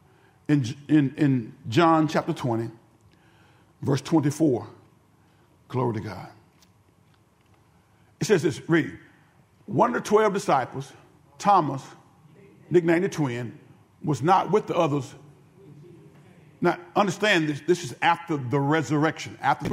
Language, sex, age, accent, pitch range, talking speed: English, male, 50-69, American, 155-210 Hz, 115 wpm